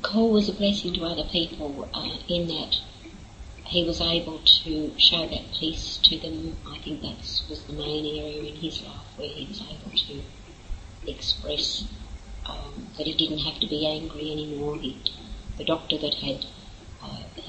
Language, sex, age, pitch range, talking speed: English, female, 50-69, 105-155 Hz, 170 wpm